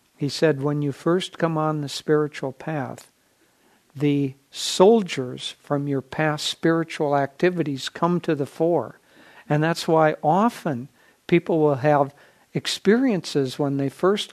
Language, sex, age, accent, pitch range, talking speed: English, male, 60-79, American, 135-160 Hz, 135 wpm